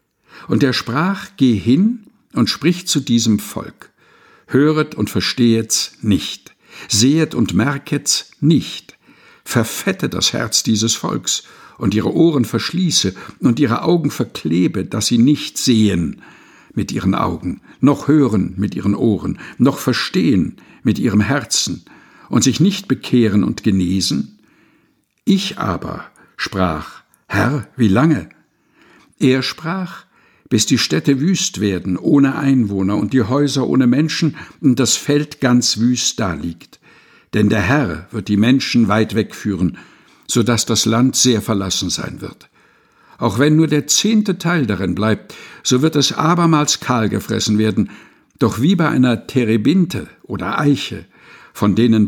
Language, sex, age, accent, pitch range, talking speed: German, male, 60-79, German, 105-150 Hz, 140 wpm